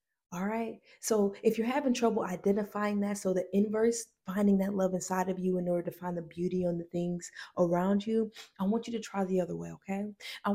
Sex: female